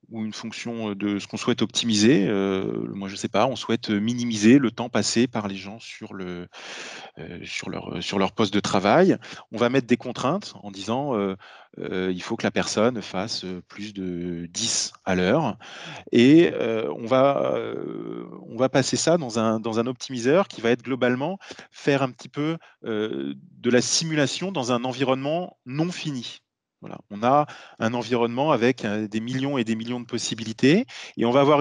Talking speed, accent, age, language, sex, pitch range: 190 wpm, French, 30-49, French, male, 110-145 Hz